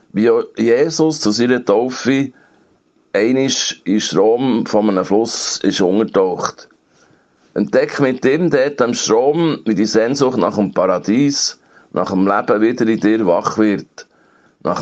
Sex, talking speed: male, 140 wpm